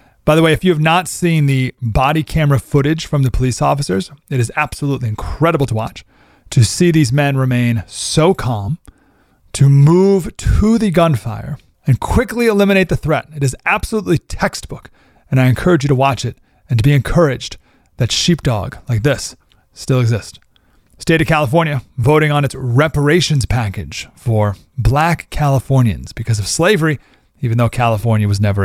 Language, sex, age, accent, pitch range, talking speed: English, male, 30-49, American, 120-170 Hz, 165 wpm